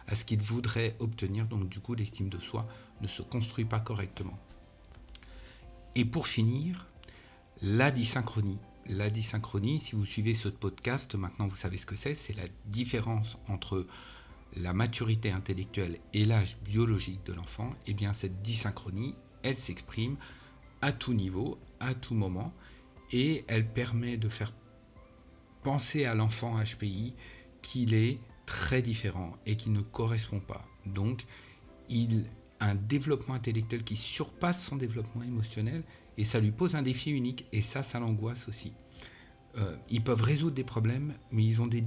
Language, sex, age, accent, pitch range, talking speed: French, male, 50-69, French, 100-120 Hz, 155 wpm